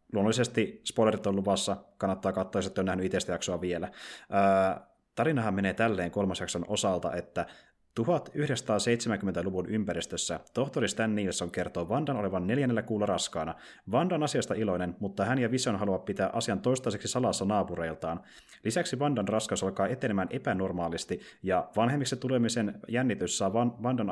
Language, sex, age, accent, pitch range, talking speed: Finnish, male, 30-49, native, 95-120 Hz, 135 wpm